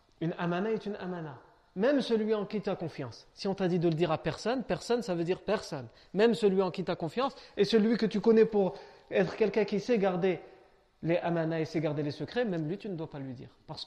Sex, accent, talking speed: male, French, 250 wpm